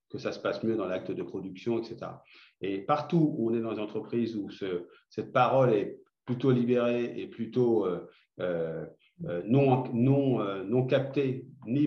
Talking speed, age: 175 wpm, 40-59